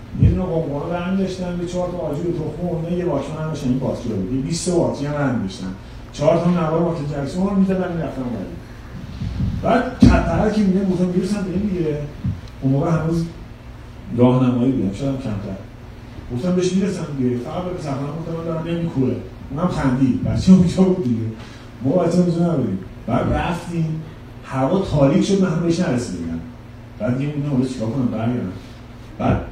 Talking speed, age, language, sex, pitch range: 145 wpm, 40-59, Persian, male, 120-170 Hz